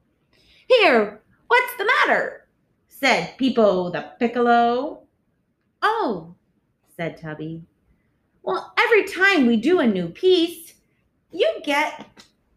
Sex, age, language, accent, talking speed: female, 30-49, English, American, 100 wpm